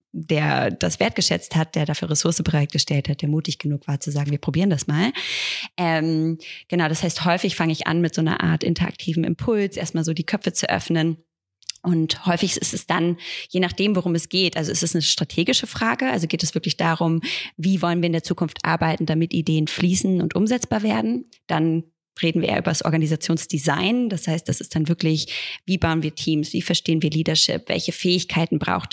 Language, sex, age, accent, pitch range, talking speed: German, female, 20-39, German, 160-180 Hz, 205 wpm